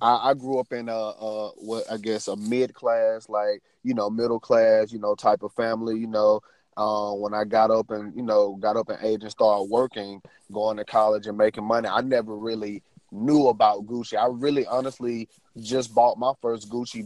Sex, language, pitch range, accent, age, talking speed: male, English, 105-130 Hz, American, 30-49, 195 wpm